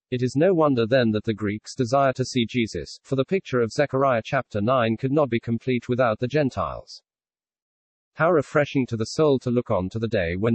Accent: British